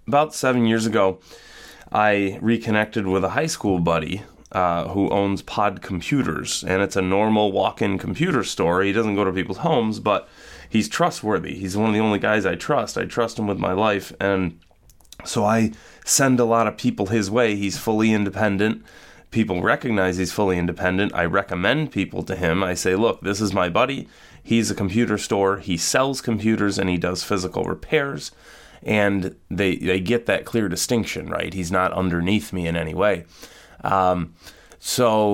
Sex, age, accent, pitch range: male, 30-49, American, 90-110 Hz